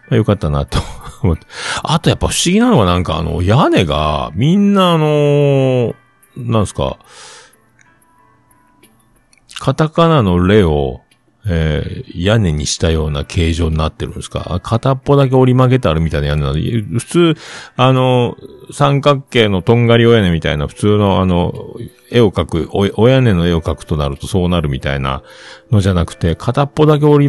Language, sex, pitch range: Japanese, male, 80-135 Hz